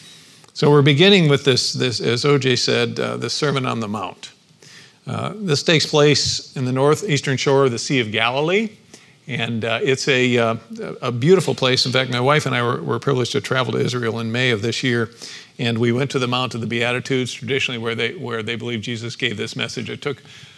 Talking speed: 220 wpm